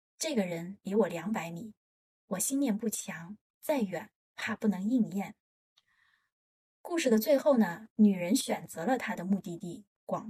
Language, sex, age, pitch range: Chinese, female, 20-39, 200-255 Hz